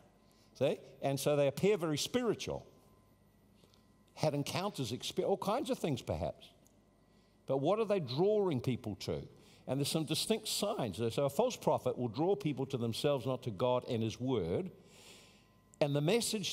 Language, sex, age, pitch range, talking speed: English, male, 50-69, 115-155 Hz, 160 wpm